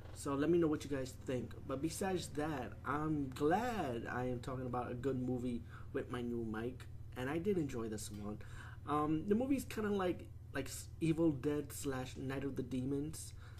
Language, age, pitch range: English, 20-39, 110-135 Hz